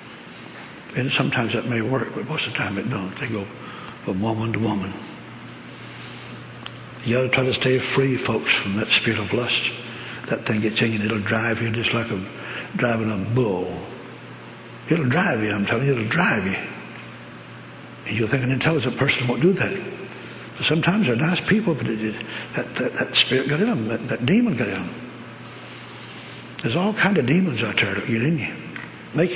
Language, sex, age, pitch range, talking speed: English, male, 60-79, 115-145 Hz, 200 wpm